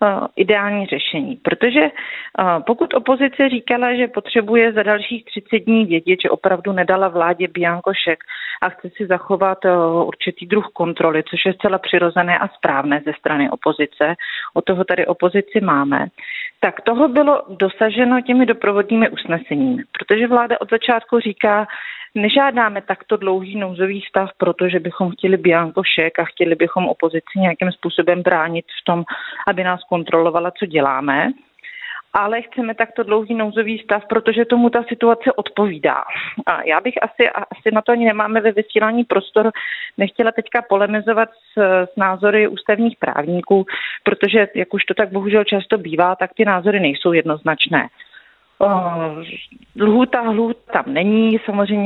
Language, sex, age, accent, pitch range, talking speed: Czech, female, 40-59, native, 180-230 Hz, 140 wpm